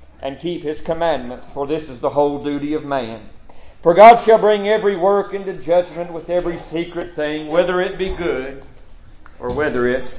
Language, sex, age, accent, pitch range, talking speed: English, male, 50-69, American, 150-185 Hz, 185 wpm